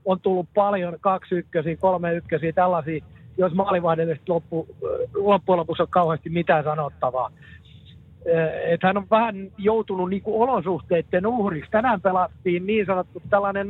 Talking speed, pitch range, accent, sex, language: 125 wpm, 165-200 Hz, native, male, Finnish